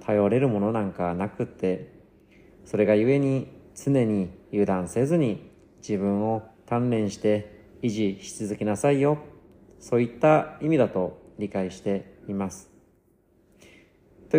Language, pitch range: Japanese, 100-135 Hz